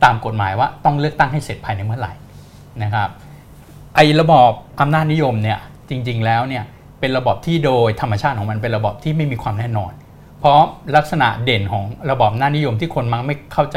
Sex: male